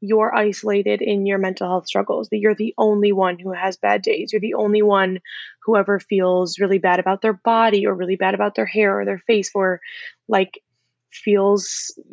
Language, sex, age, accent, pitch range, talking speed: English, female, 20-39, American, 195-220 Hz, 200 wpm